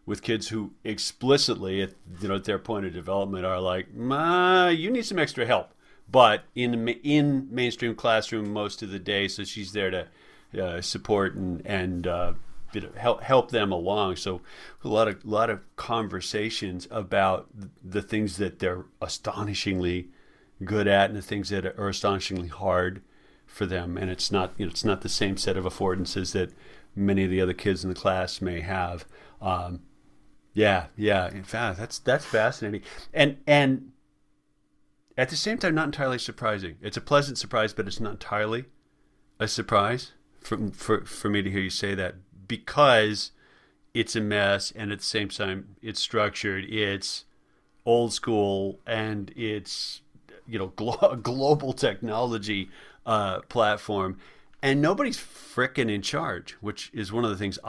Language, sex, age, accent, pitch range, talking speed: English, male, 40-59, American, 95-115 Hz, 165 wpm